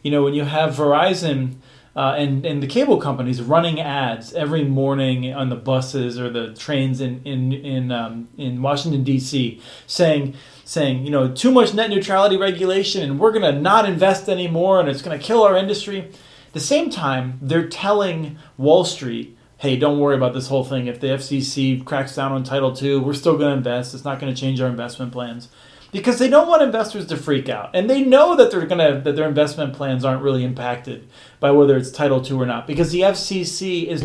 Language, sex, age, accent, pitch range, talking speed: English, male, 40-59, American, 130-175 Hz, 210 wpm